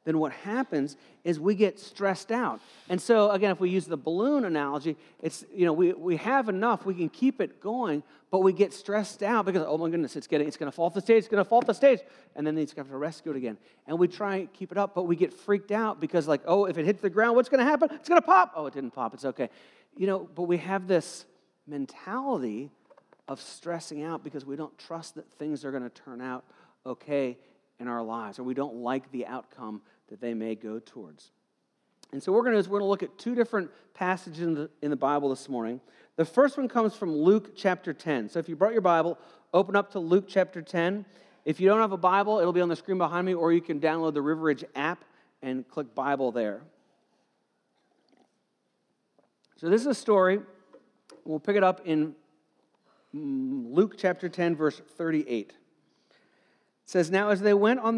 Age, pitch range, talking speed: 40-59, 150-200 Hz, 230 wpm